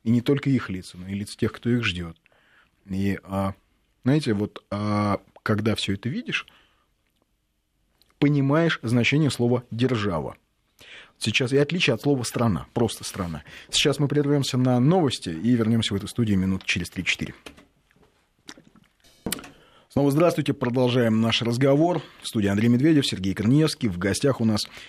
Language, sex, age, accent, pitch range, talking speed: Russian, male, 30-49, native, 100-140 Hz, 140 wpm